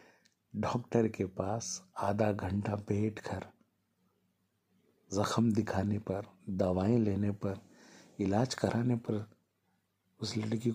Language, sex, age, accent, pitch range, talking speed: Hindi, male, 50-69, native, 95-115 Hz, 100 wpm